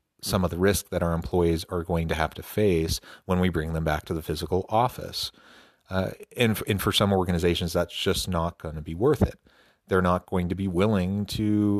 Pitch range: 85-100 Hz